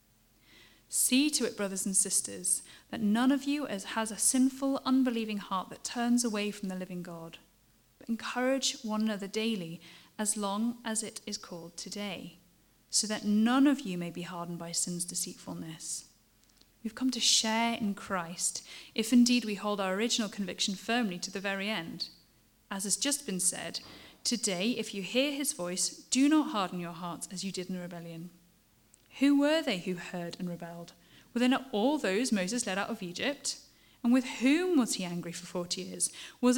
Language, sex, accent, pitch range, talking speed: English, female, British, 180-245 Hz, 180 wpm